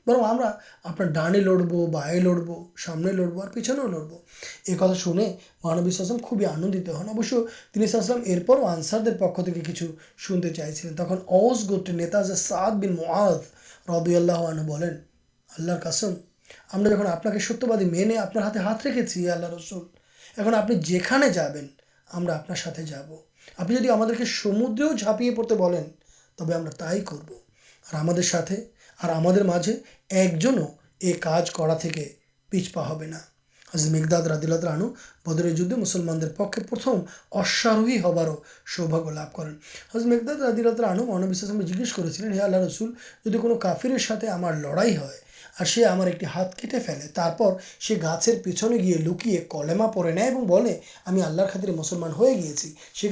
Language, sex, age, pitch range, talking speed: Urdu, male, 20-39, 170-220 Hz, 110 wpm